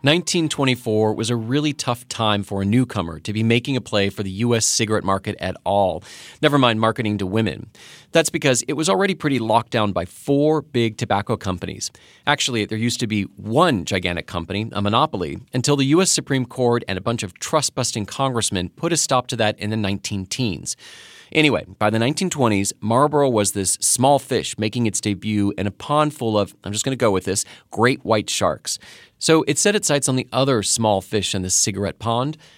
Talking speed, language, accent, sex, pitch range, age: 200 wpm, English, American, male, 105-135 Hz, 30-49